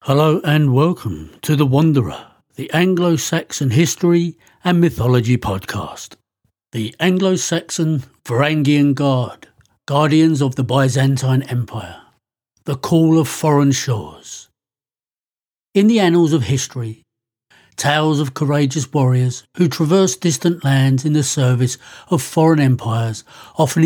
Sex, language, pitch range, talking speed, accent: male, English, 130-160 Hz, 115 wpm, British